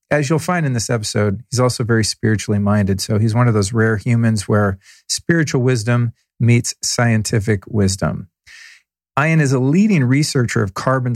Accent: American